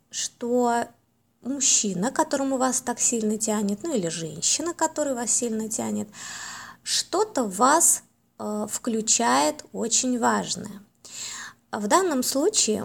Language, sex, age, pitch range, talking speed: Russian, female, 20-39, 215-285 Hz, 110 wpm